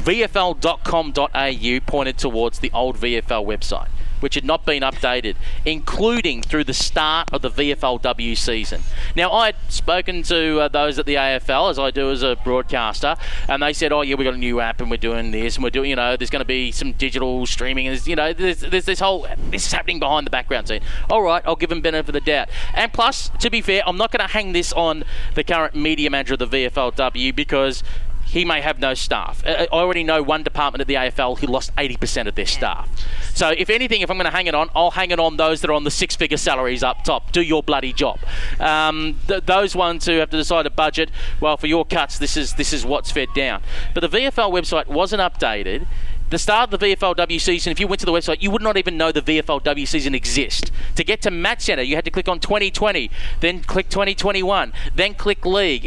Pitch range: 135-180 Hz